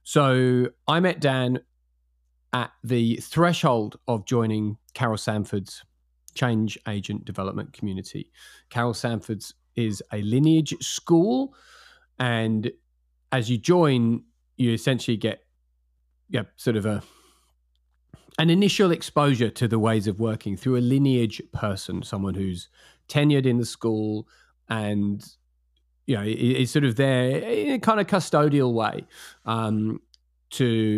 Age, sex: 40-59, male